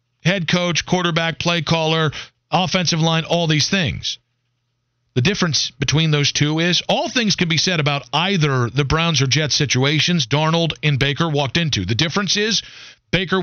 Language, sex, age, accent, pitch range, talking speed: English, male, 40-59, American, 125-180 Hz, 165 wpm